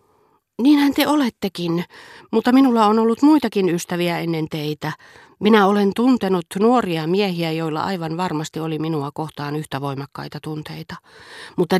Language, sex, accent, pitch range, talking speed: Finnish, female, native, 145-195 Hz, 130 wpm